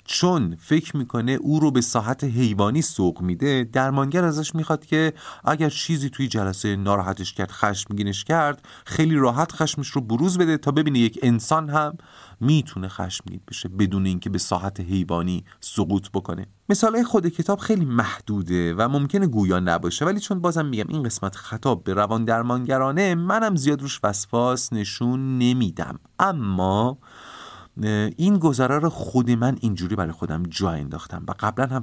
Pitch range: 95-150 Hz